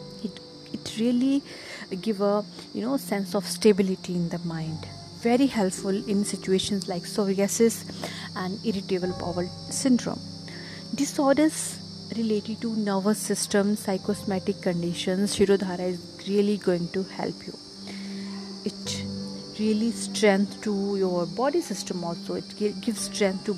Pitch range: 185-220 Hz